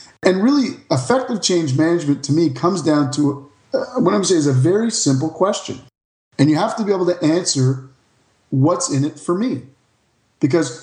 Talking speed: 185 wpm